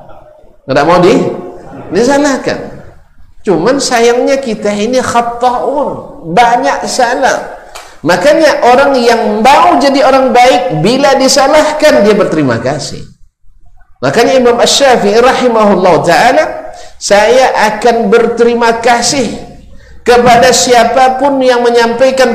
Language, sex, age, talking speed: Indonesian, male, 50-69, 95 wpm